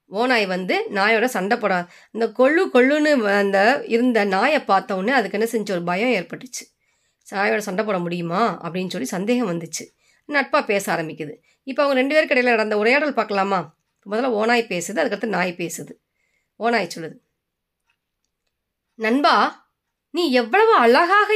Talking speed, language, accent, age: 140 wpm, Tamil, native, 20-39